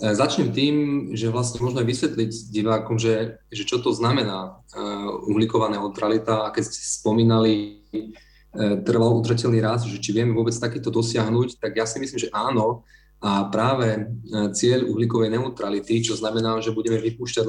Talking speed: 150 wpm